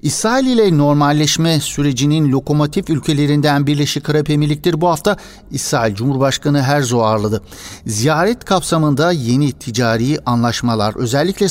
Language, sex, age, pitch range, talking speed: Turkish, male, 60-79, 120-150 Hz, 110 wpm